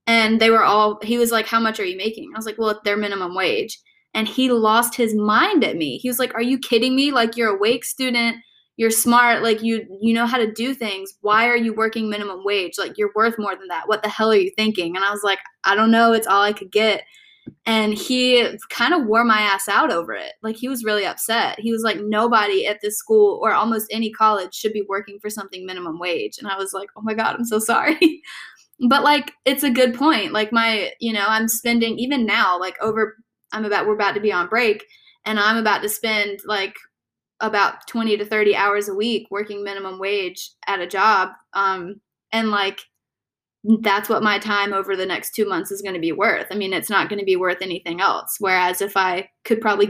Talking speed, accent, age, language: 235 wpm, American, 10-29, English